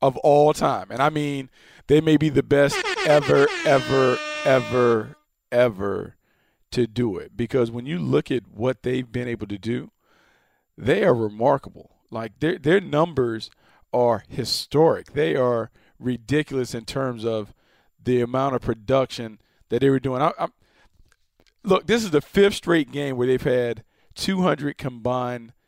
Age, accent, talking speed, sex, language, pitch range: 40-59, American, 150 wpm, male, English, 120-145 Hz